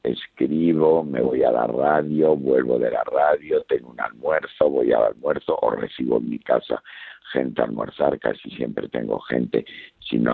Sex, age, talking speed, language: male, 60-79, 175 wpm, Spanish